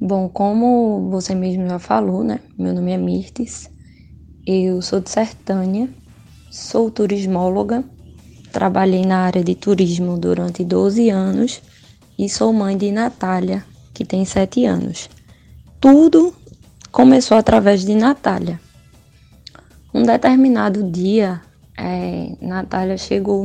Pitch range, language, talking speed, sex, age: 185-235 Hz, Portuguese, 115 wpm, female, 10-29